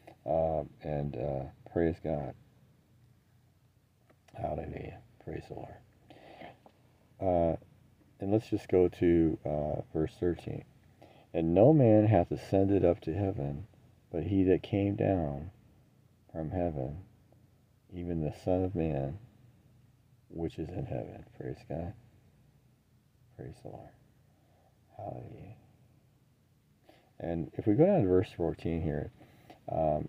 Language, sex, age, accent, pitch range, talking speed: English, male, 40-59, American, 80-115 Hz, 115 wpm